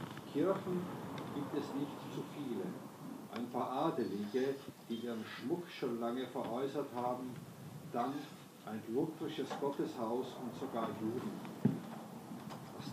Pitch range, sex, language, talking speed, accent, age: 115-140 Hz, male, Czech, 105 wpm, German, 50-69